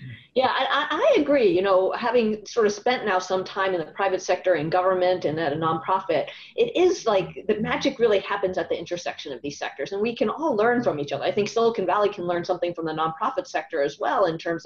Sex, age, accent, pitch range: female, 30-49, American, 170-235 Hz